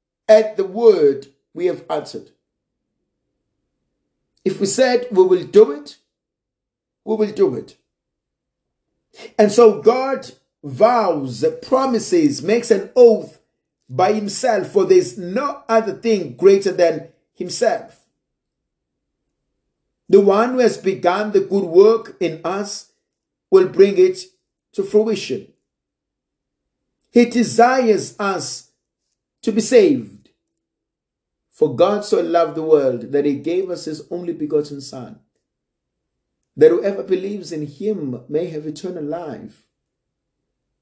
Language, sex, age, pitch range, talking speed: English, male, 50-69, 170-235 Hz, 115 wpm